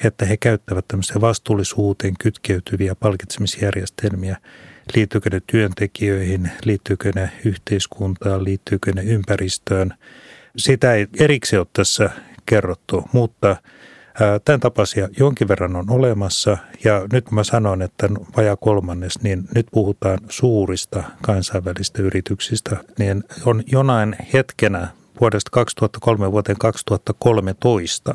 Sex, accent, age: male, native, 30-49